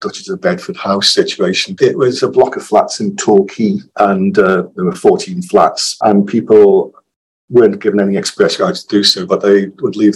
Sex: male